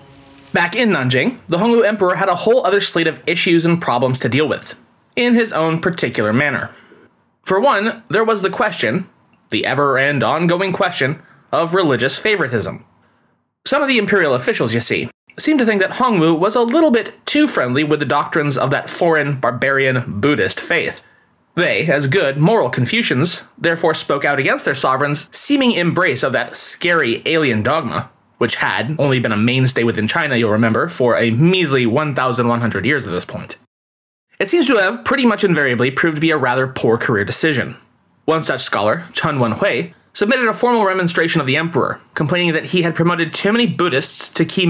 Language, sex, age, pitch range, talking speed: English, male, 20-39, 135-200 Hz, 180 wpm